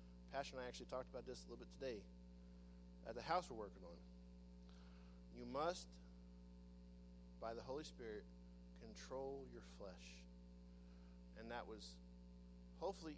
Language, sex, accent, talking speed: English, male, American, 135 wpm